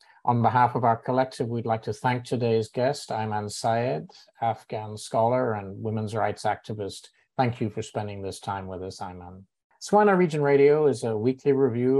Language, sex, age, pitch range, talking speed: English, male, 50-69, 105-135 Hz, 175 wpm